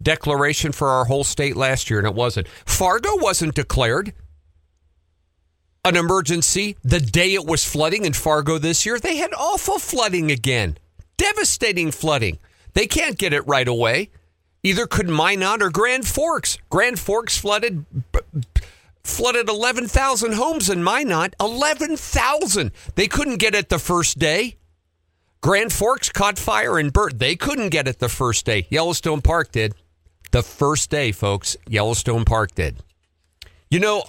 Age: 50-69